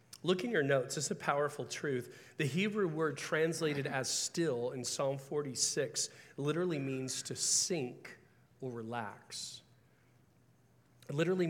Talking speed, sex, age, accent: 135 wpm, male, 40-59, American